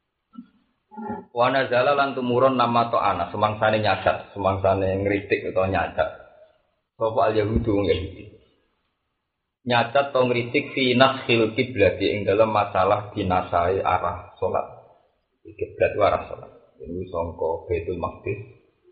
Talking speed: 115 wpm